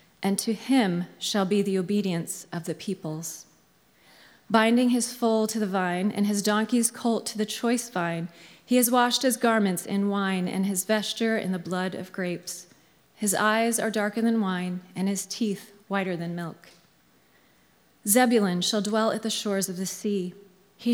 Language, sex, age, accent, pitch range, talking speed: English, female, 30-49, American, 180-225 Hz, 175 wpm